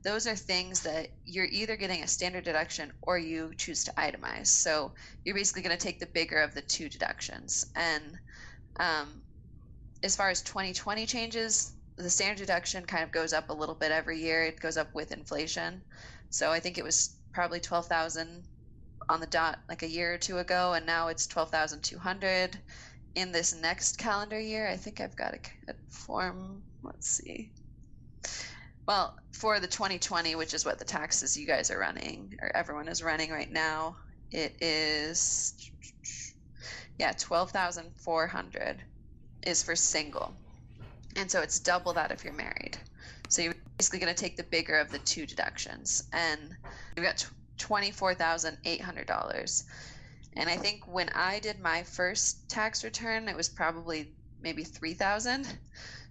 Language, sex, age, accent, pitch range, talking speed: English, female, 20-39, American, 160-190 Hz, 160 wpm